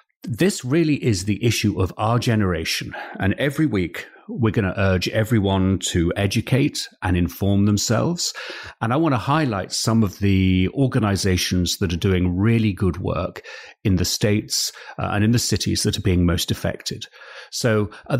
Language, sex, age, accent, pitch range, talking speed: English, male, 40-59, British, 95-120 Hz, 165 wpm